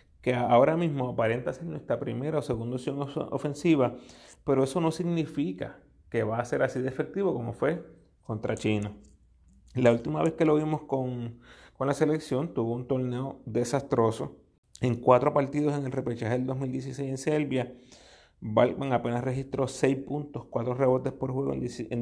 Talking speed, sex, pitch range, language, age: 165 wpm, male, 115-155 Hz, Spanish, 30-49